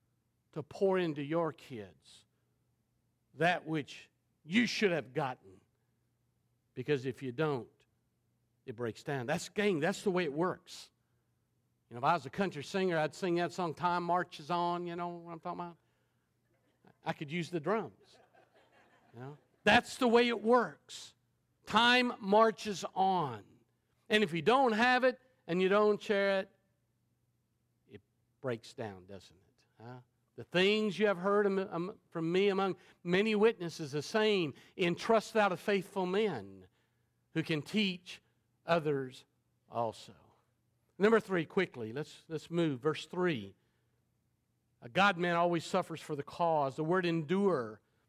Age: 50-69